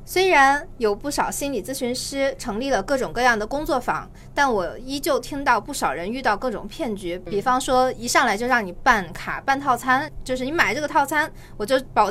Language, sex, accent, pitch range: Chinese, female, native, 205-275 Hz